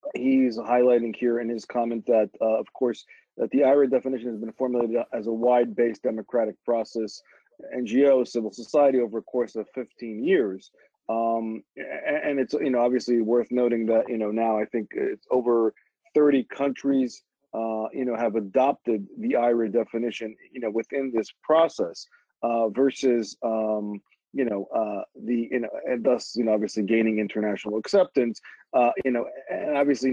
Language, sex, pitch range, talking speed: English, male, 115-130 Hz, 165 wpm